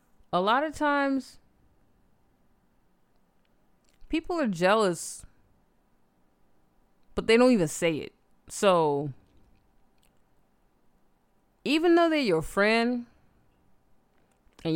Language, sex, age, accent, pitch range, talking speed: English, female, 20-39, American, 160-225 Hz, 80 wpm